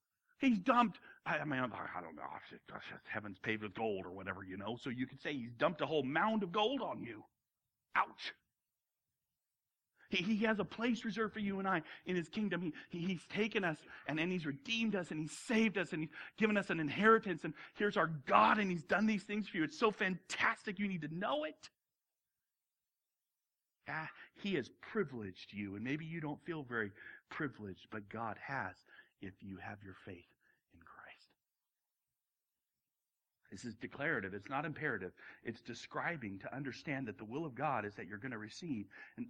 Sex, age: male, 40-59